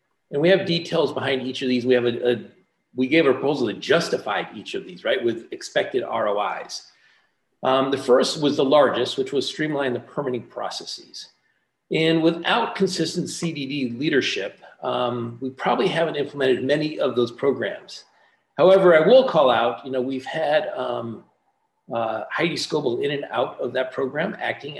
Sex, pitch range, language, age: male, 125-170 Hz, English, 40-59